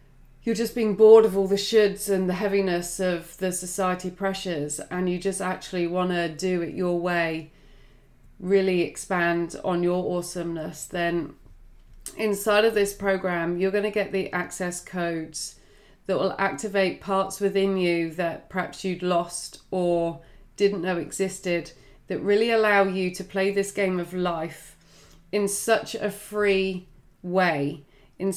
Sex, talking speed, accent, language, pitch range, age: female, 150 wpm, British, English, 175-205 Hz, 30-49